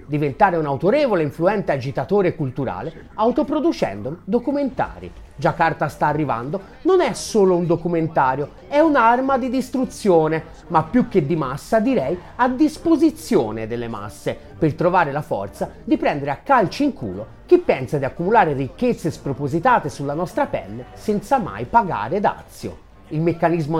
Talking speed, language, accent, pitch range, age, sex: 145 wpm, Italian, native, 145-240 Hz, 30-49, male